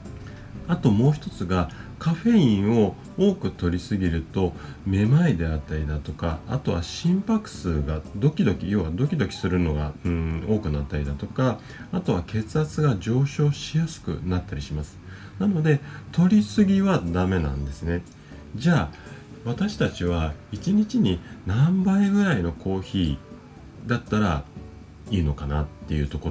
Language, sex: Japanese, male